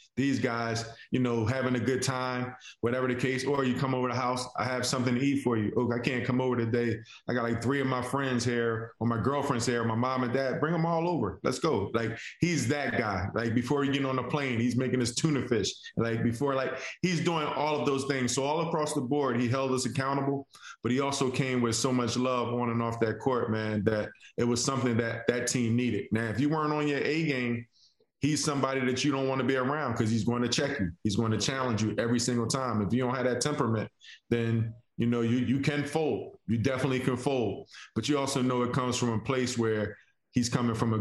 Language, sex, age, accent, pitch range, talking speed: English, male, 20-39, American, 115-135 Hz, 250 wpm